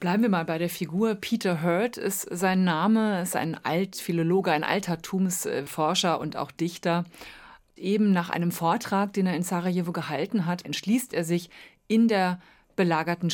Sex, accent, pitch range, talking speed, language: female, German, 160-195 Hz, 160 wpm, German